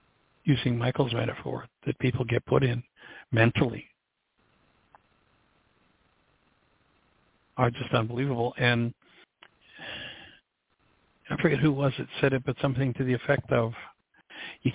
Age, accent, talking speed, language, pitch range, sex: 60-79, American, 110 wpm, English, 120-140 Hz, male